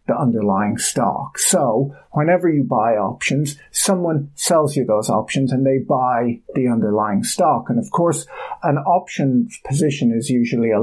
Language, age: English, 50-69